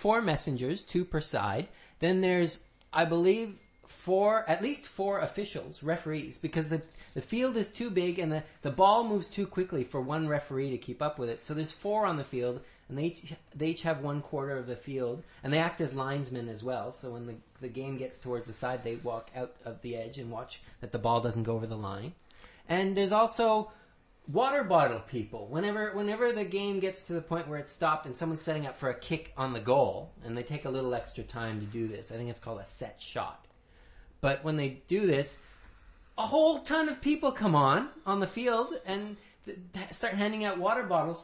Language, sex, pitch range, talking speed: English, male, 130-195 Hz, 220 wpm